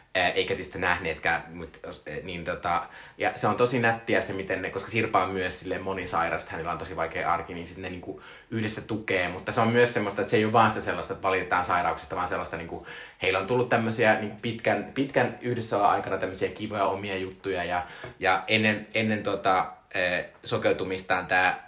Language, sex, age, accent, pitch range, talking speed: Finnish, male, 20-39, native, 95-115 Hz, 185 wpm